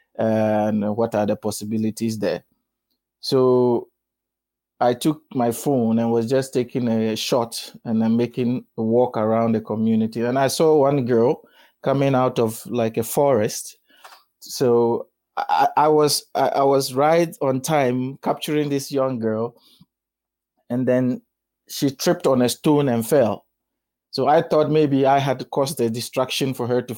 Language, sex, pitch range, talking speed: English, male, 115-140 Hz, 155 wpm